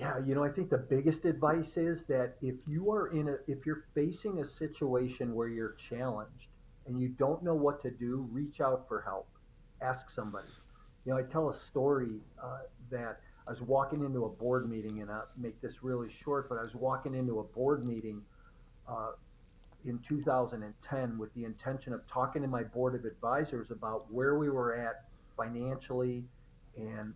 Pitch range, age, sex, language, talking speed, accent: 120-145 Hz, 50-69, male, English, 190 wpm, American